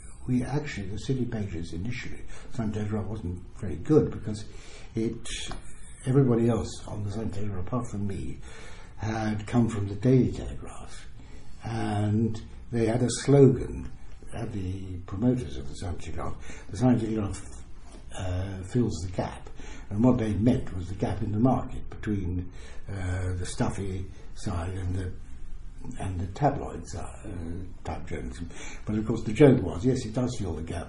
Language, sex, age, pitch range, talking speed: English, male, 60-79, 90-125 Hz, 160 wpm